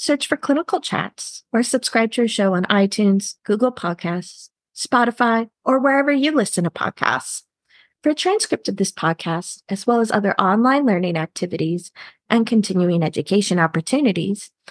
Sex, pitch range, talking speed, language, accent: female, 180-255 Hz, 150 wpm, English, American